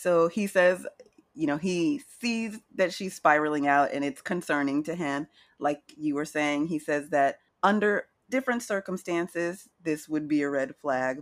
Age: 30-49